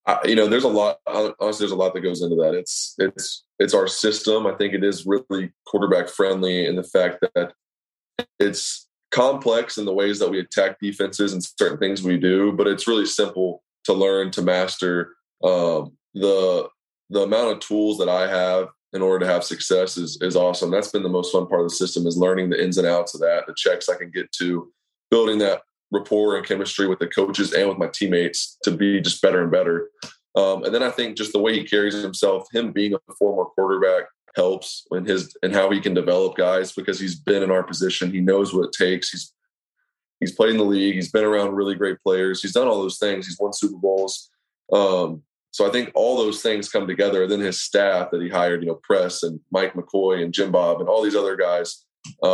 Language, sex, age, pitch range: English, male, 20-39, 90-105 Hz